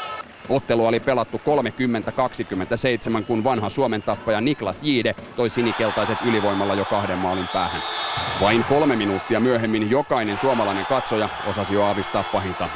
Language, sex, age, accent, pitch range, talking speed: Finnish, male, 30-49, native, 100-120 Hz, 135 wpm